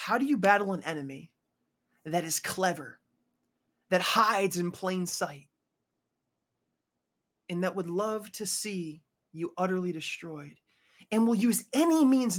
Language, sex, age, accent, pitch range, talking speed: English, male, 30-49, American, 155-200 Hz, 135 wpm